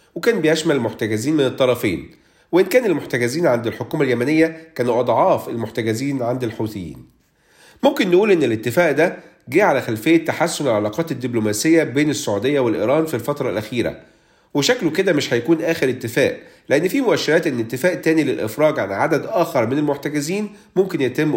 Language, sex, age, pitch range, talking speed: Arabic, male, 40-59, 125-170 Hz, 150 wpm